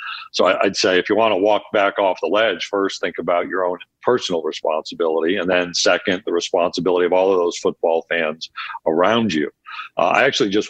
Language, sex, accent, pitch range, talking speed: English, male, American, 90-105 Hz, 200 wpm